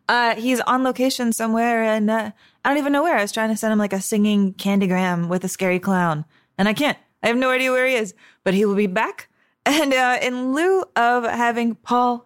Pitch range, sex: 195-250 Hz, female